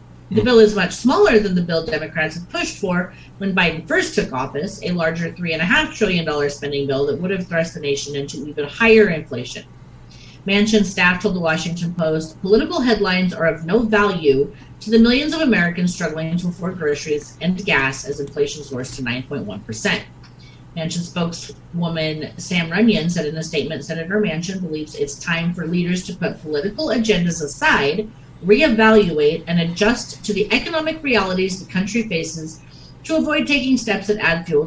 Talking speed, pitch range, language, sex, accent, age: 170 wpm, 145-210 Hz, English, female, American, 30-49